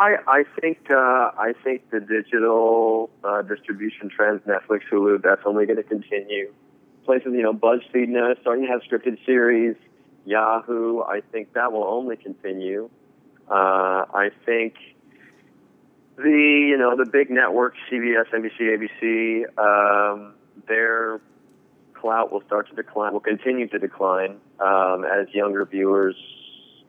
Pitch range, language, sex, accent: 100-120 Hz, English, male, American